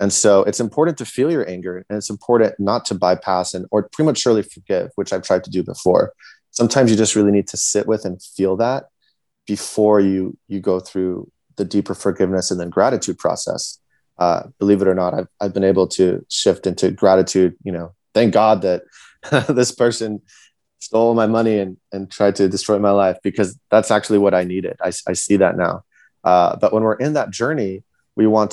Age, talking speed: 20-39, 205 wpm